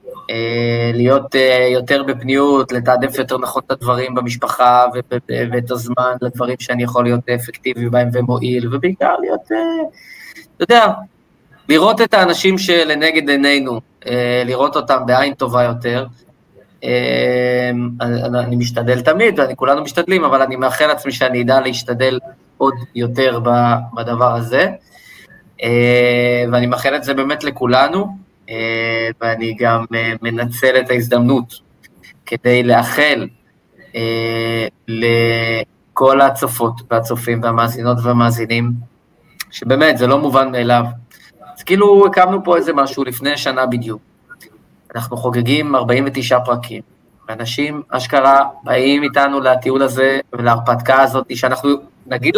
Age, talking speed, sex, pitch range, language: 20-39, 110 wpm, male, 120-140 Hz, Hebrew